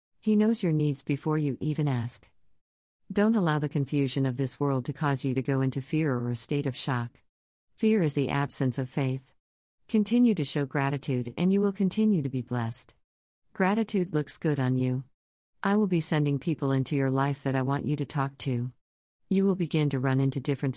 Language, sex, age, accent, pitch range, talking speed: English, female, 50-69, American, 130-160 Hz, 205 wpm